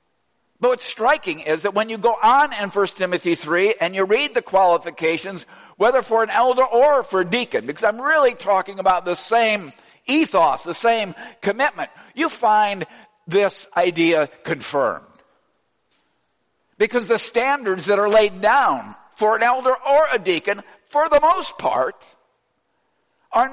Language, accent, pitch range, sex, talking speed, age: English, American, 210-275 Hz, male, 155 wpm, 60-79